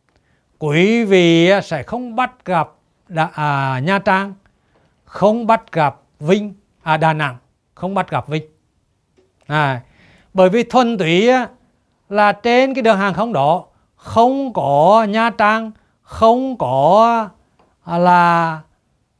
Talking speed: 115 wpm